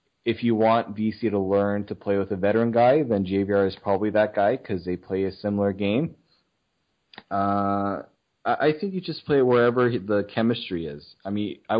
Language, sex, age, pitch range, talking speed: English, male, 20-39, 95-110 Hz, 190 wpm